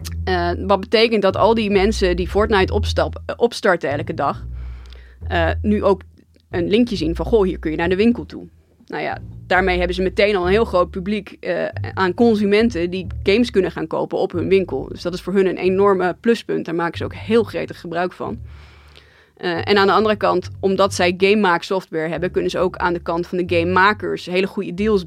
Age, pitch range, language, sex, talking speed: 20-39, 165-205 Hz, Dutch, female, 215 wpm